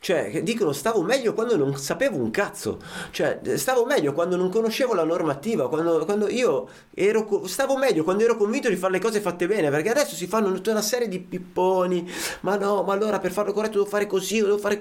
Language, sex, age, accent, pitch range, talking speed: Italian, male, 30-49, native, 130-205 Hz, 215 wpm